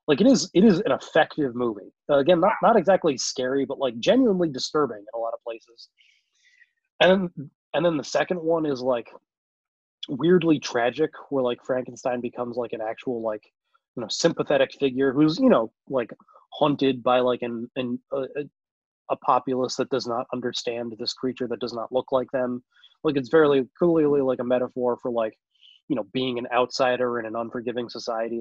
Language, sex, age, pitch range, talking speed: English, male, 20-39, 120-150 Hz, 185 wpm